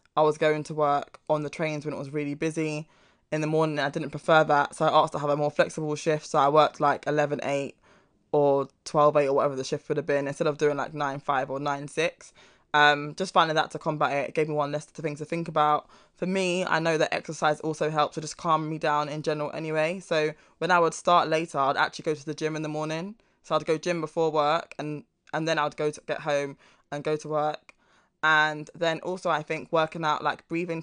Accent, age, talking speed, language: British, 20-39, 245 wpm, English